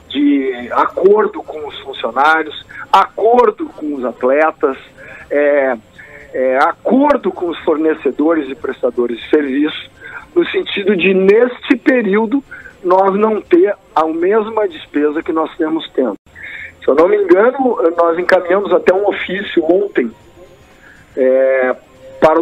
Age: 50-69